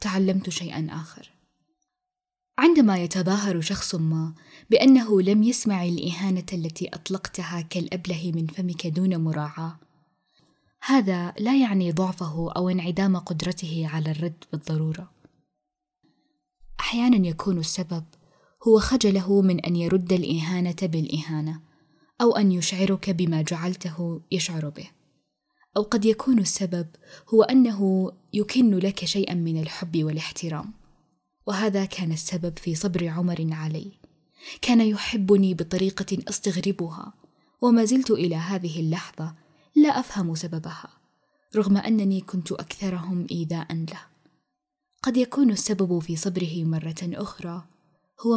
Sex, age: female, 20-39